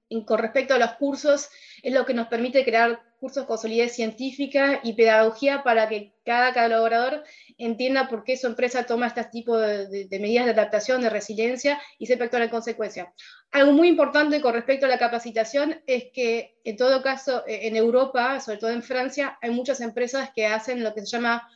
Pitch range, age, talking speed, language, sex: 225-265 Hz, 20-39, 195 wpm, Spanish, female